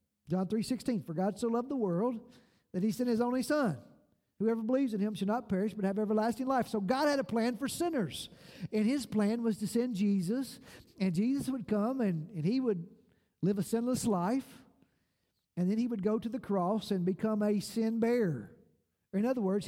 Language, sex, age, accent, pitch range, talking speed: English, male, 50-69, American, 185-235 Hz, 205 wpm